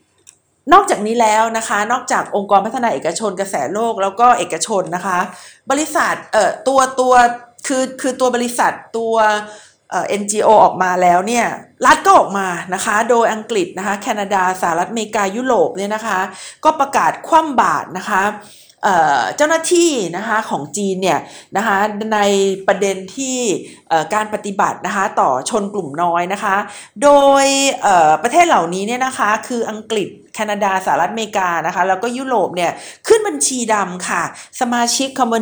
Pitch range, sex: 195-255 Hz, female